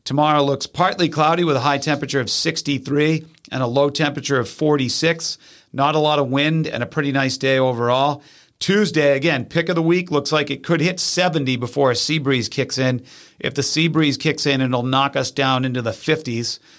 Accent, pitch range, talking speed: American, 135-155 Hz, 205 wpm